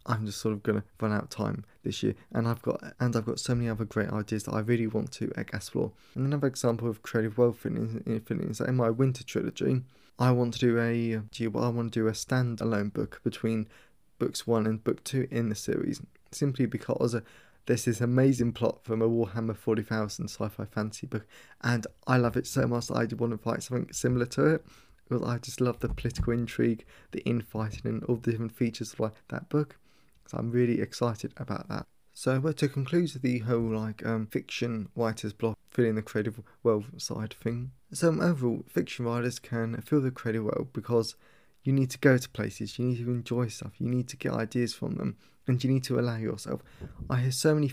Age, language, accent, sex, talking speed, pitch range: 20-39, English, British, male, 225 wpm, 110-125 Hz